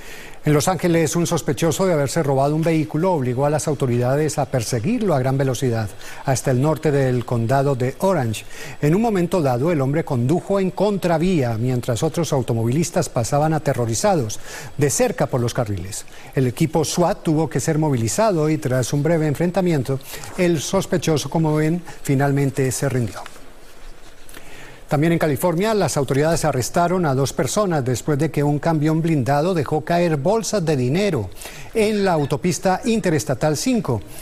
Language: Spanish